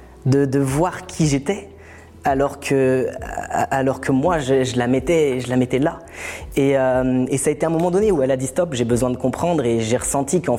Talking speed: 225 wpm